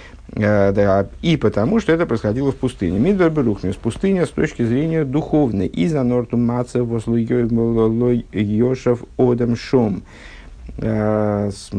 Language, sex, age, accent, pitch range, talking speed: Russian, male, 50-69, native, 100-125 Hz, 120 wpm